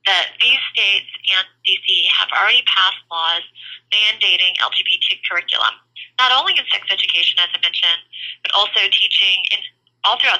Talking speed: 145 wpm